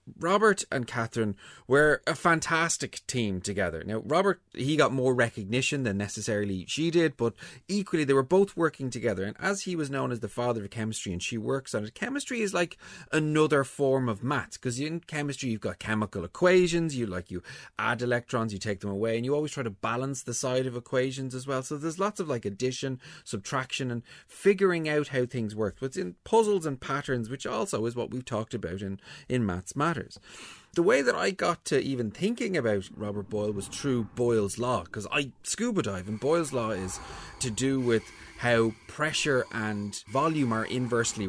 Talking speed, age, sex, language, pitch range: 200 wpm, 30-49, male, English, 105-140 Hz